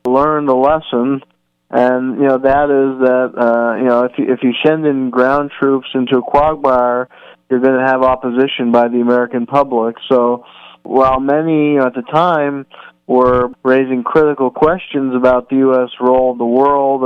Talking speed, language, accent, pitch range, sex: 180 wpm, English, American, 120-135 Hz, male